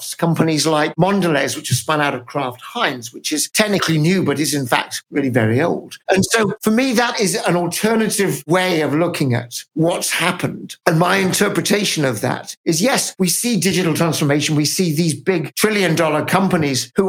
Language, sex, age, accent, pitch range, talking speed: English, male, 50-69, British, 150-190 Hz, 190 wpm